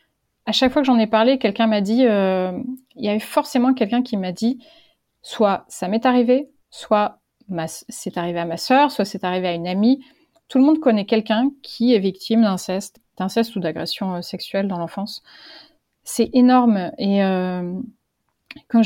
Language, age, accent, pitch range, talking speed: French, 30-49, French, 195-245 Hz, 180 wpm